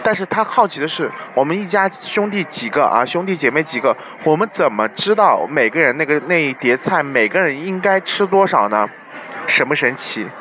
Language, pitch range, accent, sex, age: Chinese, 150-205 Hz, native, male, 20-39